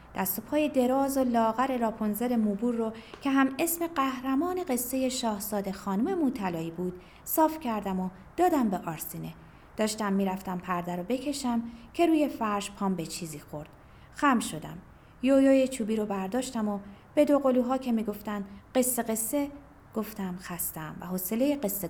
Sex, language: female, Persian